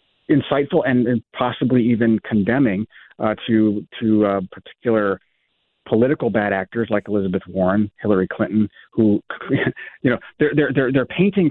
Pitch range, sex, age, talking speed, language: 110-140 Hz, male, 40-59, 130 wpm, English